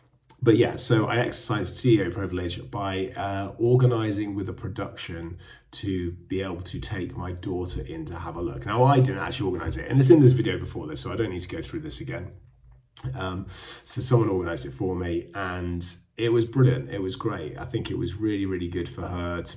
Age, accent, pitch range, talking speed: 30-49, British, 90-120 Hz, 220 wpm